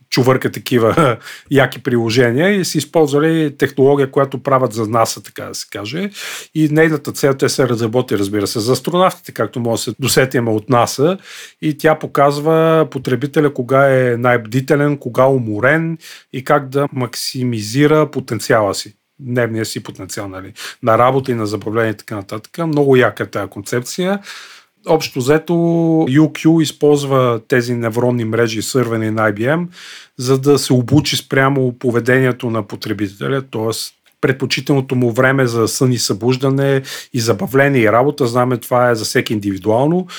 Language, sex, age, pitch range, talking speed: Bulgarian, male, 40-59, 115-145 Hz, 150 wpm